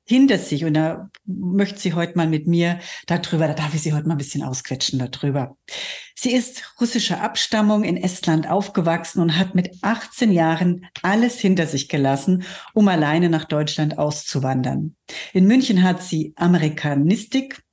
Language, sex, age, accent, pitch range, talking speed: German, female, 60-79, German, 155-195 Hz, 160 wpm